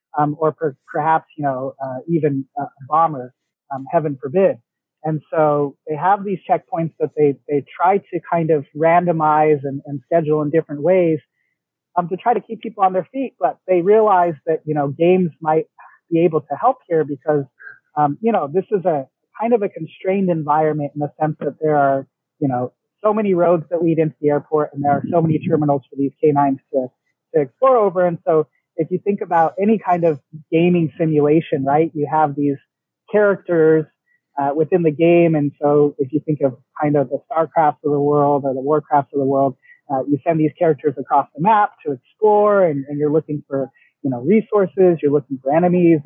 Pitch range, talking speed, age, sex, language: 145-175 Hz, 205 wpm, 30-49, male, English